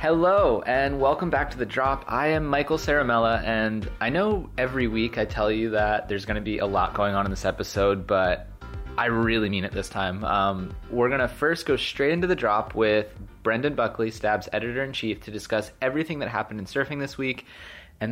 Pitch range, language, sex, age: 105-140 Hz, English, male, 20-39